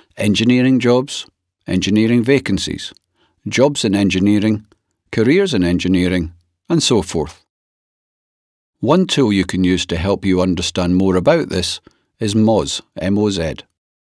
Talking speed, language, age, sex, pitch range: 120 wpm, English, 50-69, male, 95-135 Hz